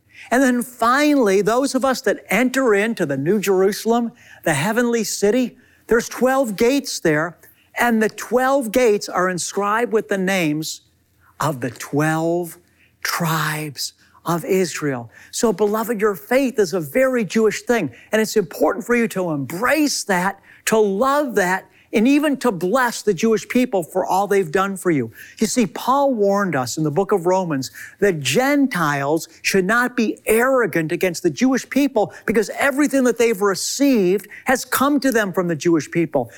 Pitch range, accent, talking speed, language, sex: 175-240 Hz, American, 165 wpm, English, male